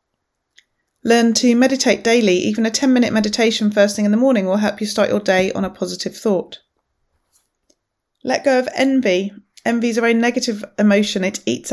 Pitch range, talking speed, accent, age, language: 210-245 Hz, 180 wpm, British, 30-49, English